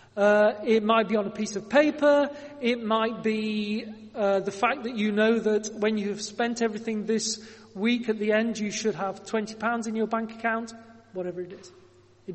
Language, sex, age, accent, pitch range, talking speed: English, male, 40-59, British, 195-250 Hz, 200 wpm